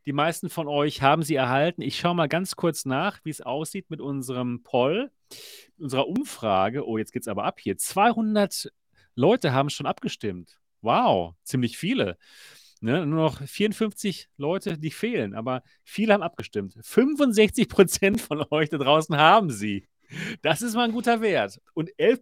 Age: 40-59